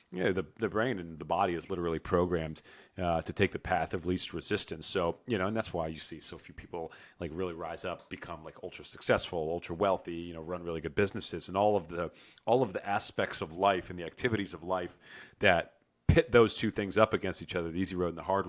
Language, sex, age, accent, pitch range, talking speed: English, male, 40-59, American, 85-105 Hz, 250 wpm